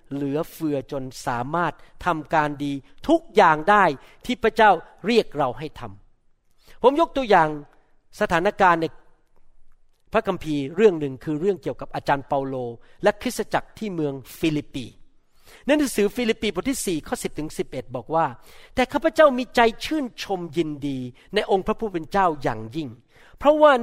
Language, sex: Thai, male